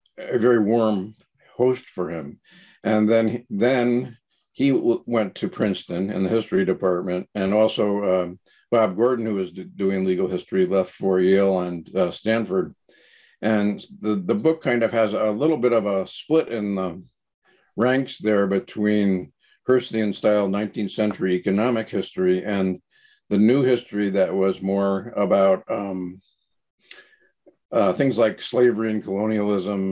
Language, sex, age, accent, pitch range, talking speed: English, male, 50-69, American, 95-120 Hz, 145 wpm